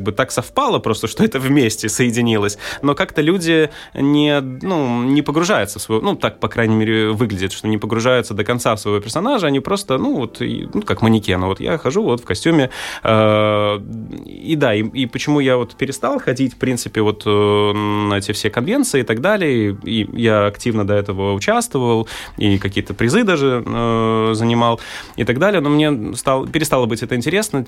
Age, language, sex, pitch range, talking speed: 20-39, Russian, male, 110-135 Hz, 180 wpm